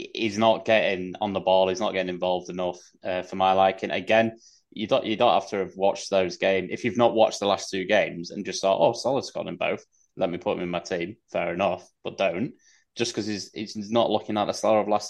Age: 20-39